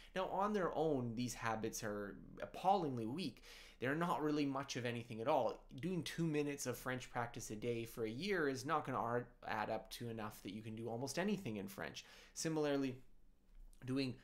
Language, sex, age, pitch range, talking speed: English, male, 20-39, 115-150 Hz, 195 wpm